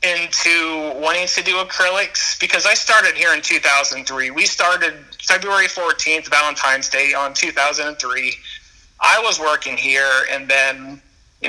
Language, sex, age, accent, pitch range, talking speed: English, male, 30-49, American, 145-180 Hz, 135 wpm